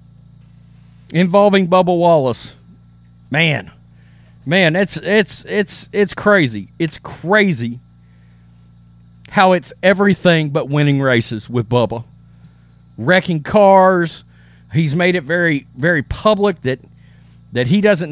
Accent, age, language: American, 40-59, English